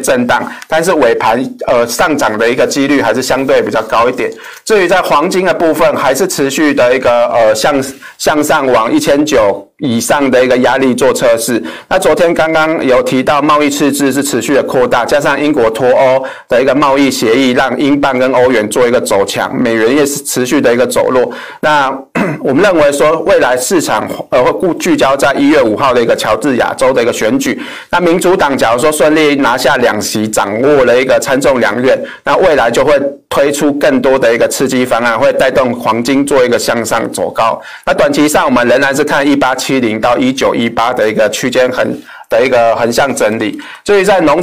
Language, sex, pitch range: Chinese, male, 130-175 Hz